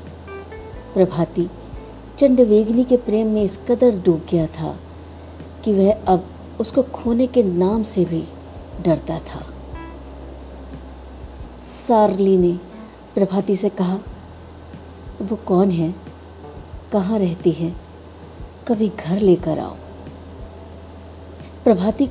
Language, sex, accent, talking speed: Hindi, female, native, 100 wpm